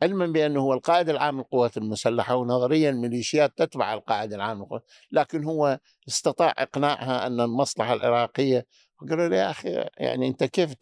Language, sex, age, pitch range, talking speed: Arabic, male, 60-79, 120-145 Hz, 145 wpm